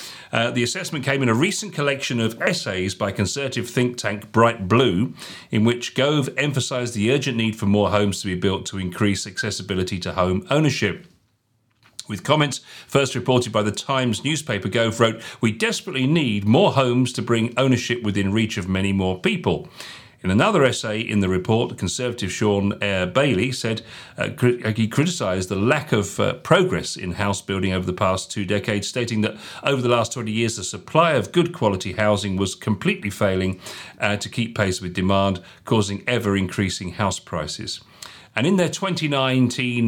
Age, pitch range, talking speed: 40-59, 95-120 Hz, 175 wpm